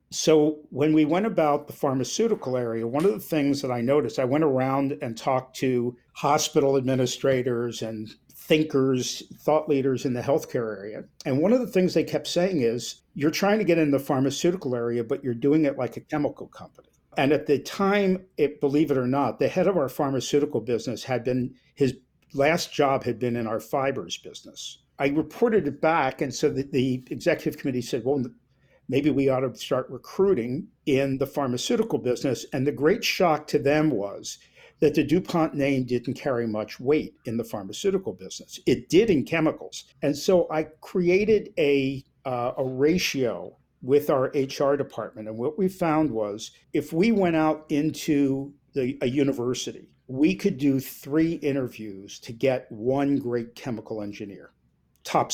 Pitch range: 125-155 Hz